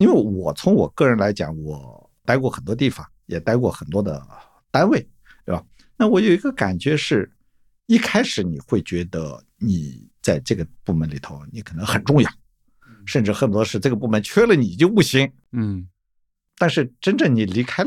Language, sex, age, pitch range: Chinese, male, 50-69, 100-150 Hz